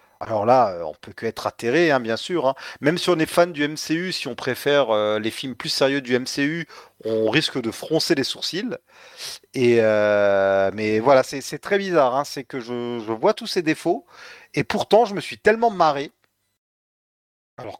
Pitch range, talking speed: 110-160 Hz, 190 wpm